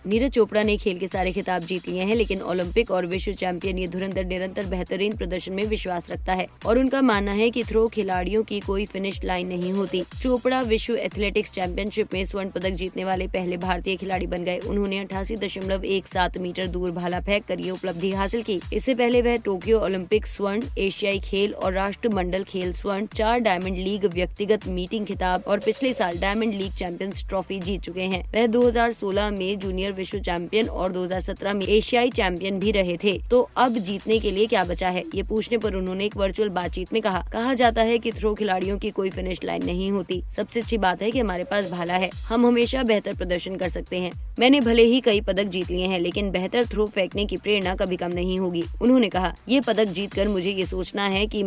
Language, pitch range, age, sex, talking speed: Hindi, 185-215 Hz, 20-39, female, 205 wpm